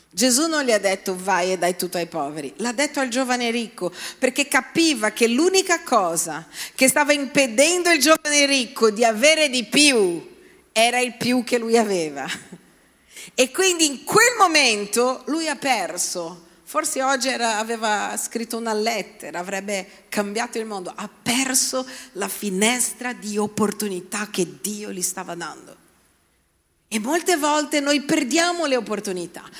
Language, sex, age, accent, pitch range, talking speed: Italian, female, 40-59, native, 220-295 Hz, 150 wpm